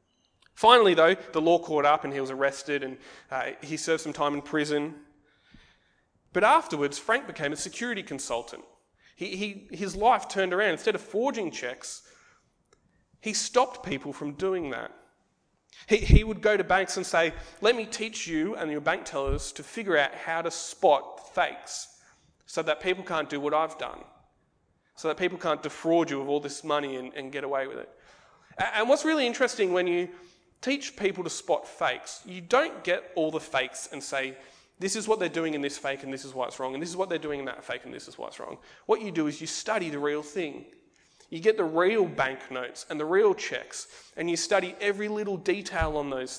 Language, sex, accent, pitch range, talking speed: English, male, Australian, 145-205 Hz, 210 wpm